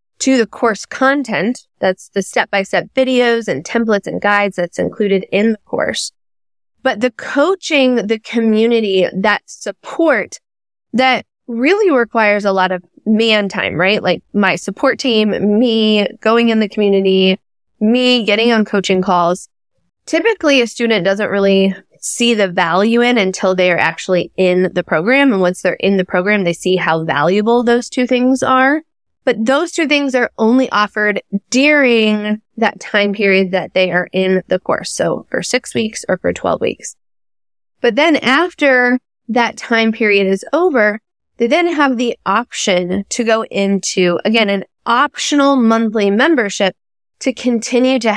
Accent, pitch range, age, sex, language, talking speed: American, 195-245 Hz, 10-29, female, English, 155 wpm